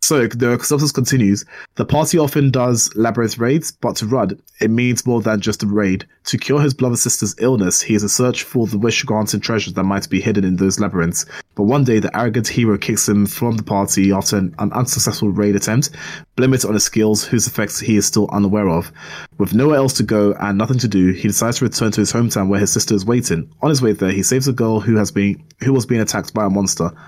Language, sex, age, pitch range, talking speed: English, male, 20-39, 100-125 Hz, 240 wpm